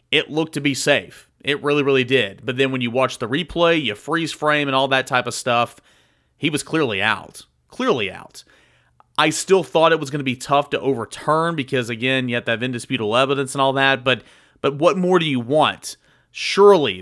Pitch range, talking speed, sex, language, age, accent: 125-145 Hz, 215 wpm, male, English, 30-49, American